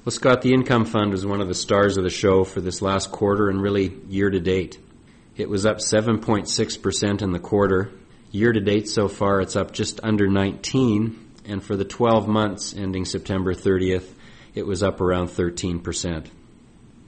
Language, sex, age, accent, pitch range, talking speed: English, male, 40-59, American, 95-110 Hz, 170 wpm